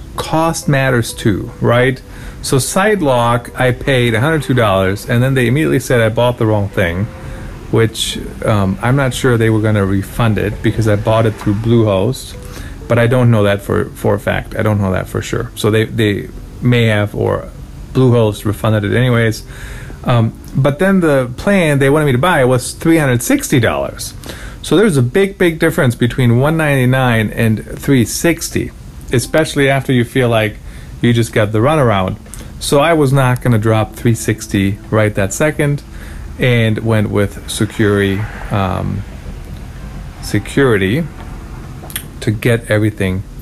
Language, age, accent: English, 40-59, American